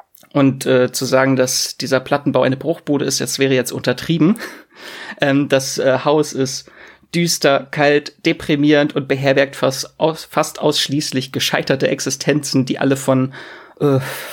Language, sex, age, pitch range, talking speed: German, male, 30-49, 130-155 Hz, 140 wpm